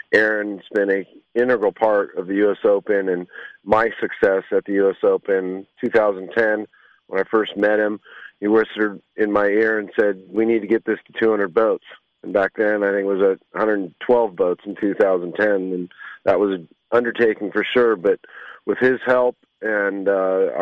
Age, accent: 40-59, American